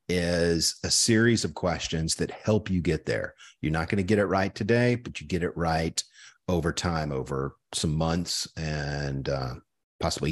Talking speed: 180 wpm